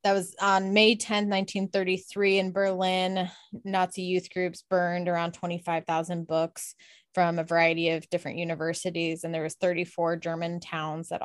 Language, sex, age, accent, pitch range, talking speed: English, female, 20-39, American, 175-195 Hz, 150 wpm